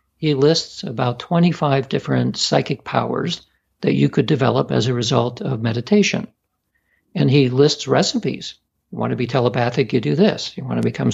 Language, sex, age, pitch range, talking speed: English, male, 60-79, 115-150 Hz, 170 wpm